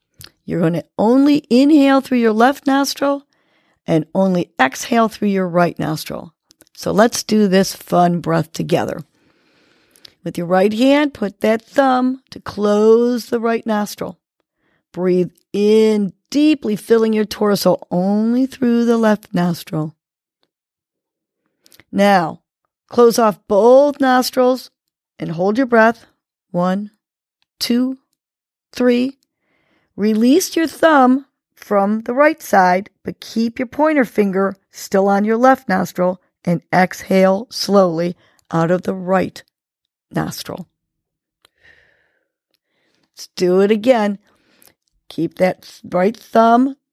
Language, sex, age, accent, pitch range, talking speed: English, female, 40-59, American, 185-255 Hz, 115 wpm